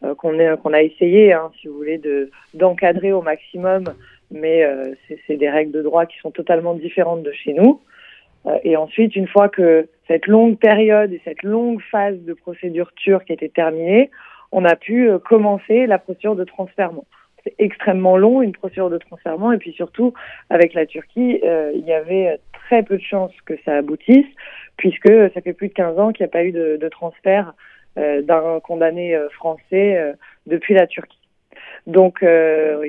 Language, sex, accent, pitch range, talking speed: Italian, female, French, 160-200 Hz, 180 wpm